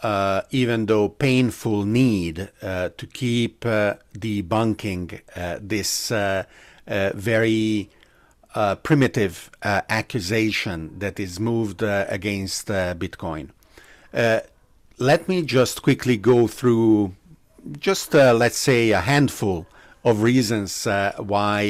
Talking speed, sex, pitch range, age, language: 120 wpm, male, 100-125 Hz, 50-69, English